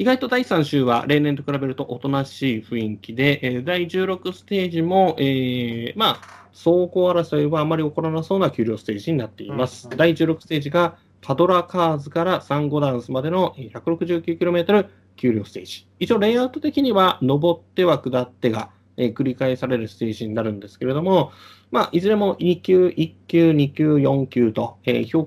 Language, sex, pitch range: Japanese, male, 120-170 Hz